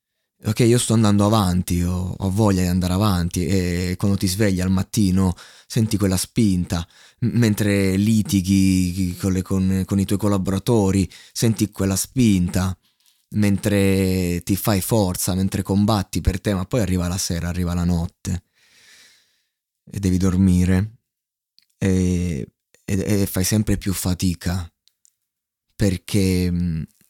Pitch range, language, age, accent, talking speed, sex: 90-105 Hz, Italian, 20-39, native, 125 wpm, male